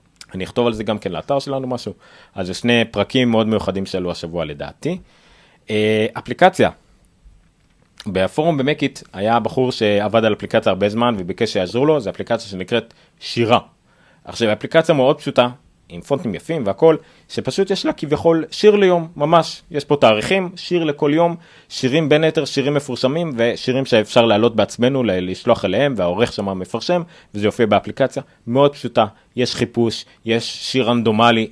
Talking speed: 150 wpm